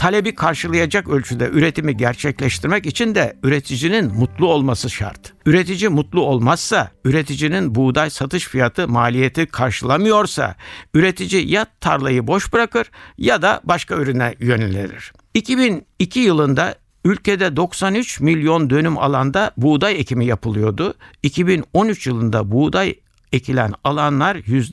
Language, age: Turkish, 60-79